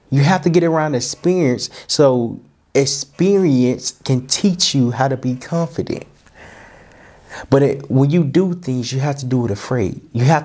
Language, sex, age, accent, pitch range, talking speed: English, male, 20-39, American, 120-145 Hz, 160 wpm